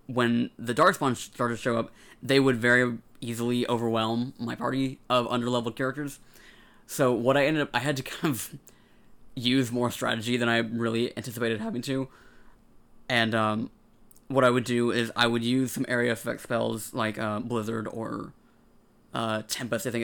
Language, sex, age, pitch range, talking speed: English, male, 20-39, 115-130 Hz, 175 wpm